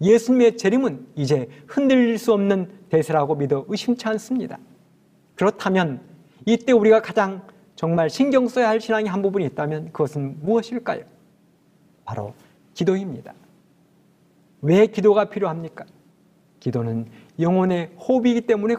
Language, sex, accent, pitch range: Korean, male, native, 160-225 Hz